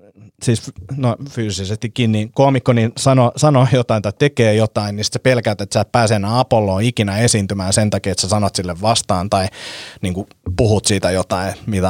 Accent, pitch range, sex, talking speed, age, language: native, 105-130 Hz, male, 185 wpm, 30-49, Finnish